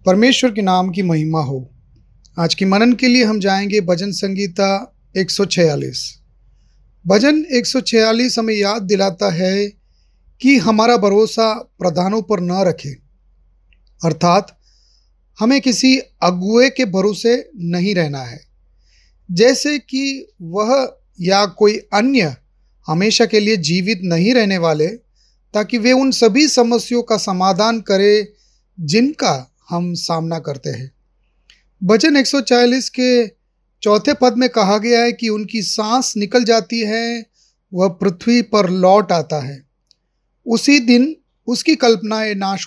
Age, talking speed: 30-49, 125 wpm